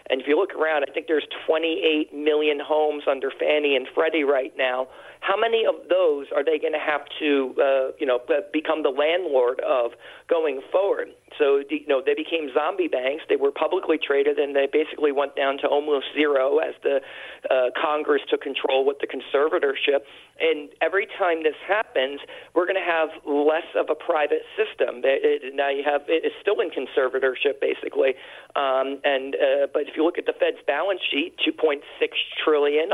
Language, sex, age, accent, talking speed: English, male, 40-59, American, 190 wpm